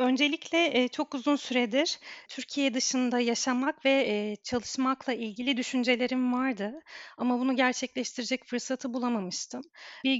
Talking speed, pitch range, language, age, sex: 105 wpm, 240-280 Hz, Turkish, 40-59, female